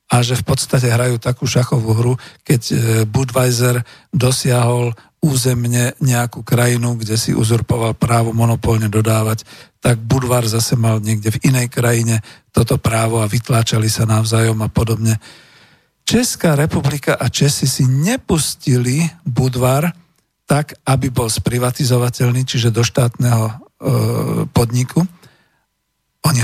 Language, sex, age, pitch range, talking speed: Slovak, male, 50-69, 115-140 Hz, 120 wpm